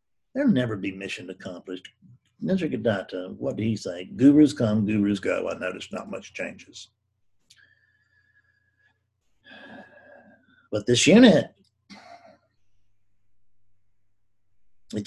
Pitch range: 100-145 Hz